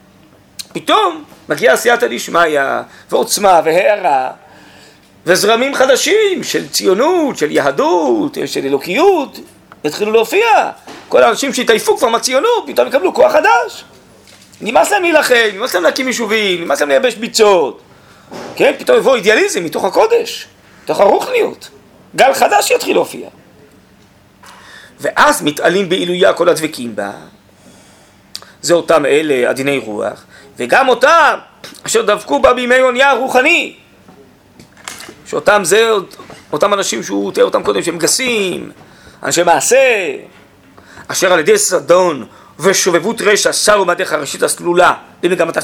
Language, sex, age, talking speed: Hebrew, male, 40-59, 120 wpm